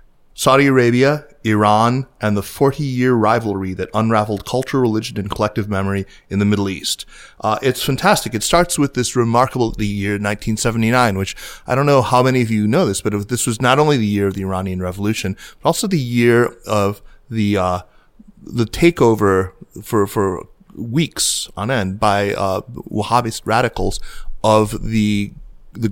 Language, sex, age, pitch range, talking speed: English, male, 30-49, 100-120 Hz, 165 wpm